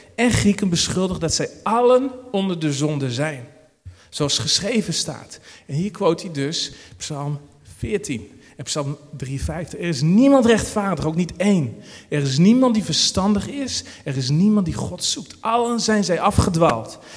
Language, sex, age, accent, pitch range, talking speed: Dutch, male, 40-59, Dutch, 150-210 Hz, 160 wpm